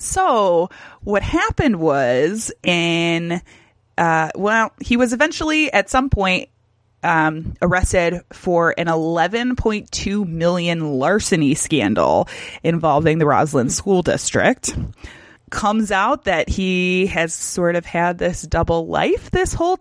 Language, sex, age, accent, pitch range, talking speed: English, female, 20-39, American, 160-210 Hz, 120 wpm